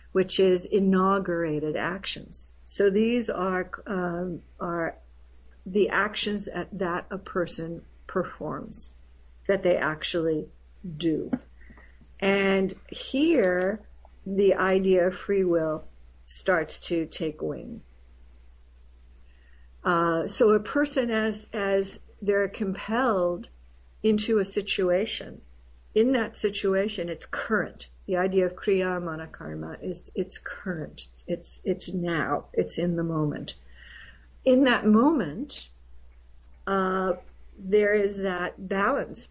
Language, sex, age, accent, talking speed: English, female, 50-69, American, 105 wpm